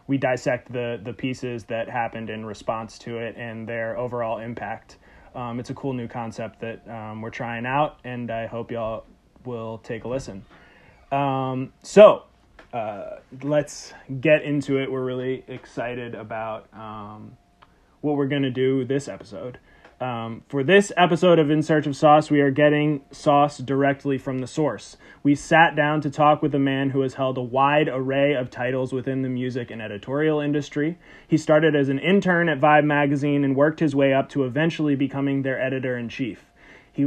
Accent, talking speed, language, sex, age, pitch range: American, 180 wpm, English, male, 20-39, 125-150 Hz